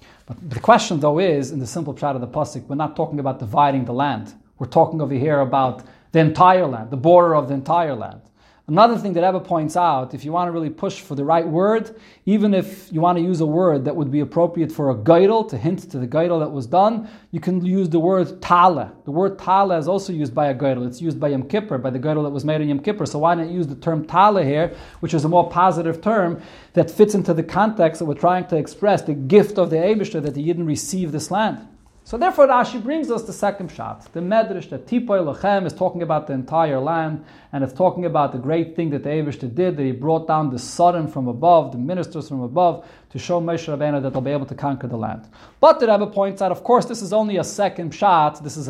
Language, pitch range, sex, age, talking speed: English, 145-185 Hz, male, 30-49, 250 wpm